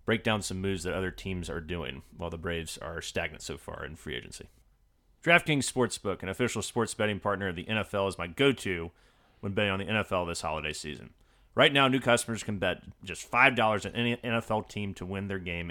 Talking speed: 215 wpm